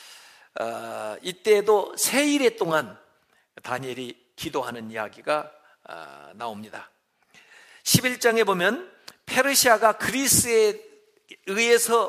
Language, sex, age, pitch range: Korean, male, 50-69, 155-245 Hz